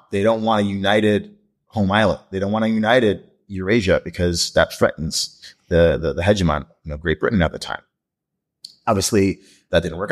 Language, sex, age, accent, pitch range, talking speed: English, male, 30-49, American, 90-105 Hz, 185 wpm